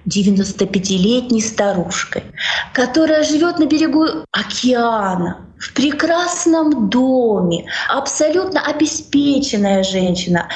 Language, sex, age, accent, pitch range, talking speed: Russian, female, 20-39, native, 225-320 Hz, 75 wpm